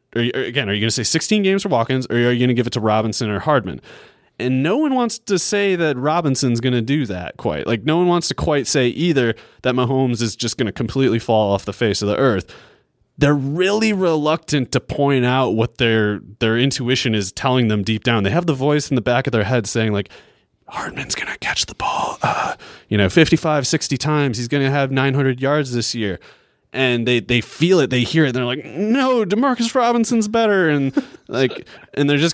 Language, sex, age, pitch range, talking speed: English, male, 30-49, 115-165 Hz, 230 wpm